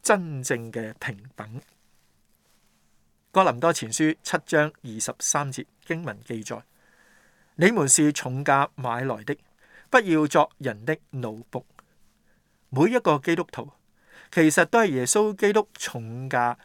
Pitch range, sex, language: 125-170 Hz, male, Chinese